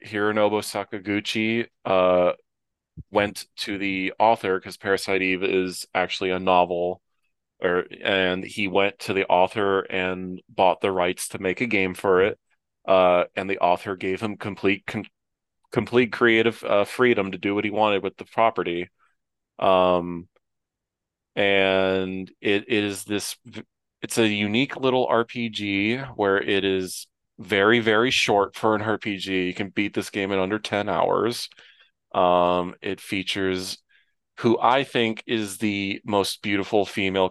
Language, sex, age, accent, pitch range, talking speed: English, male, 30-49, American, 90-105 Hz, 140 wpm